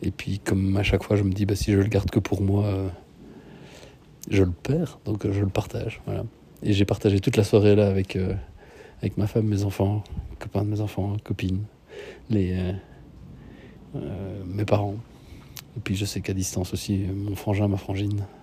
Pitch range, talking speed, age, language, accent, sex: 100-115 Hz, 185 wpm, 40-59, French, French, male